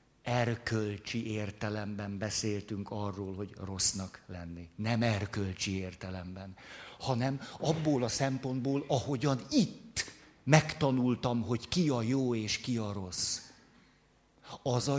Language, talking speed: Hungarian, 110 wpm